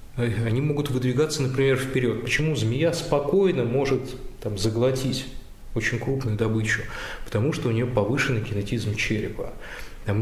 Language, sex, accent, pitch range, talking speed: Russian, male, native, 110-140 Hz, 130 wpm